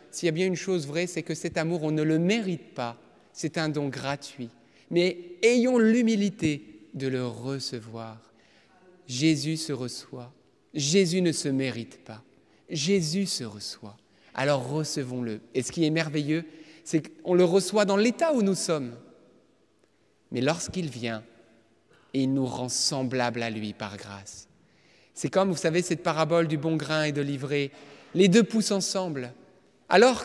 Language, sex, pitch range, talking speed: French, male, 130-190 Hz, 160 wpm